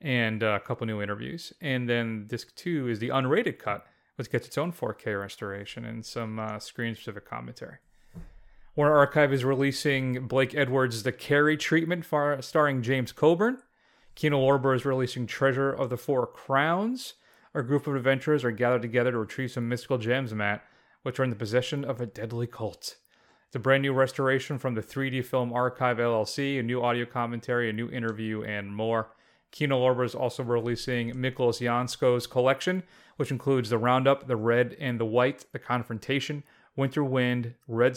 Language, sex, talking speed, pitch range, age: English, male, 175 wpm, 115-140 Hz, 30-49